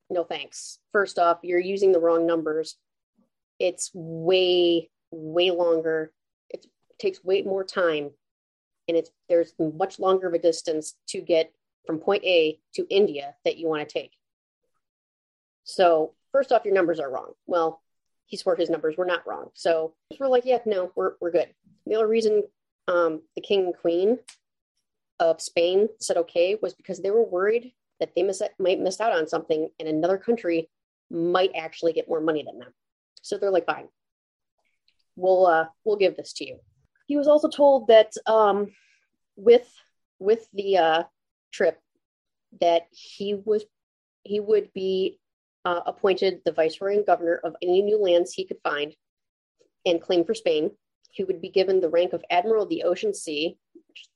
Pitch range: 165-210 Hz